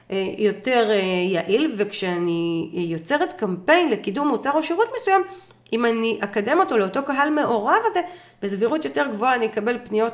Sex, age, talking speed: female, 30-49, 140 wpm